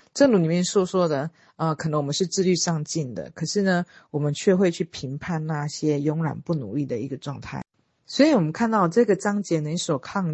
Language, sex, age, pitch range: Chinese, female, 40-59, 145-180 Hz